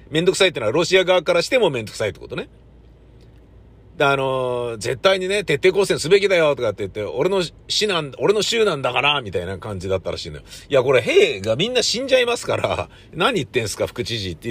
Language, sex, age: Japanese, male, 50-69